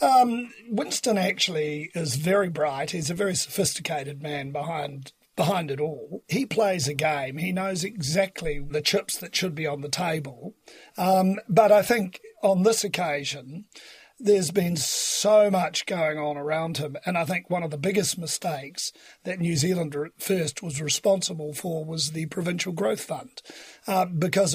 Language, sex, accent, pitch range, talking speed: English, male, Australian, 155-195 Hz, 170 wpm